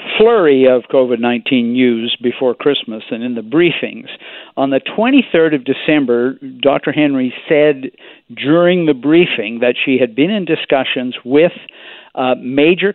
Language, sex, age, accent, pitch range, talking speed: English, male, 50-69, American, 125-155 Hz, 140 wpm